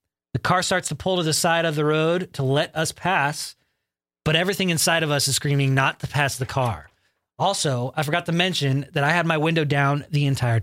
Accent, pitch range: American, 130-165 Hz